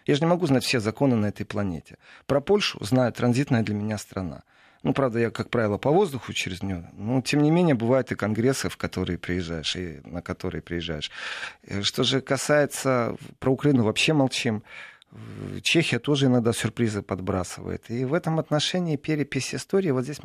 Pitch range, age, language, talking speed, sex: 100-140 Hz, 40-59, Russian, 180 wpm, male